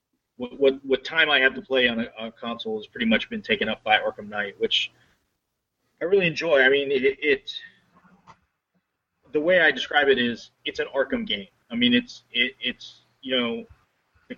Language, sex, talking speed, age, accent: English, male, 195 wpm, 30-49, American